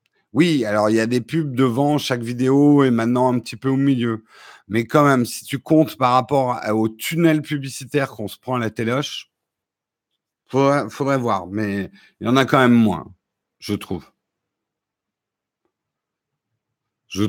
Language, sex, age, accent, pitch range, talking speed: French, male, 50-69, French, 115-160 Hz, 170 wpm